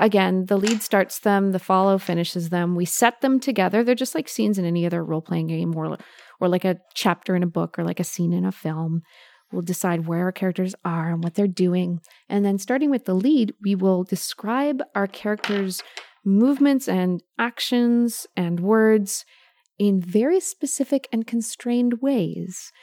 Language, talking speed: English, 180 wpm